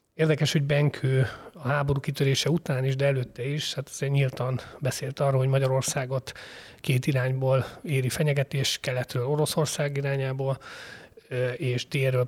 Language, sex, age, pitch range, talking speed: Hungarian, male, 30-49, 130-150 Hz, 130 wpm